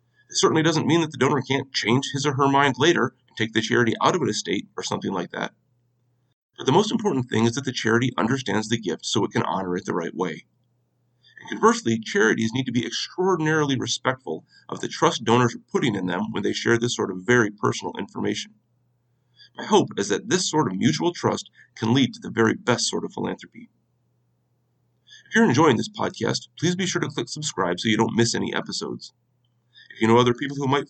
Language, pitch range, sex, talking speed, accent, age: English, 115-145 Hz, male, 215 wpm, American, 40-59